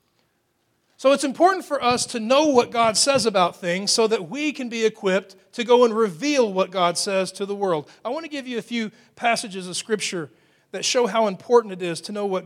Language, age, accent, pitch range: English, 40-59, American, 175-240 Hz